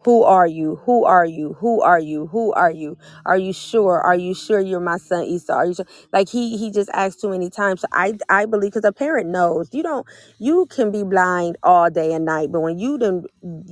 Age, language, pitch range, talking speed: 30-49, English, 175-205 Hz, 245 wpm